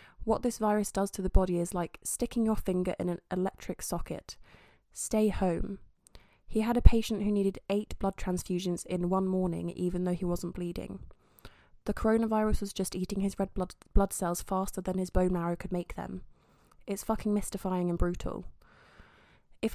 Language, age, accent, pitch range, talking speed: English, 20-39, British, 175-195 Hz, 175 wpm